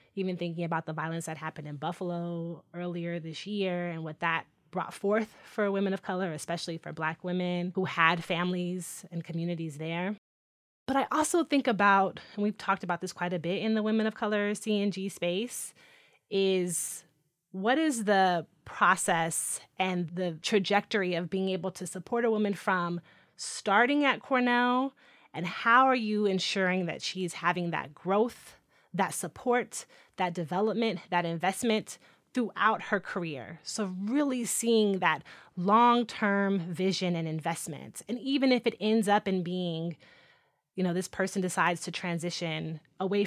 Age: 30-49